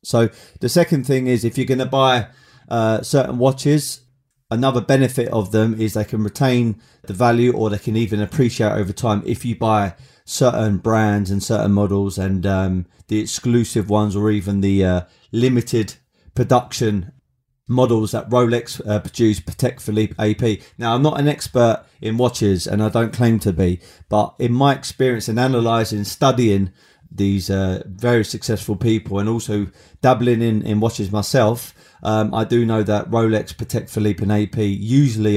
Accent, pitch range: British, 100-125 Hz